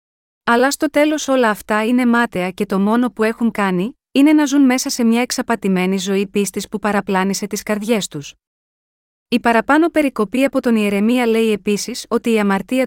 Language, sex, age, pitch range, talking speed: Greek, female, 30-49, 200-250 Hz, 175 wpm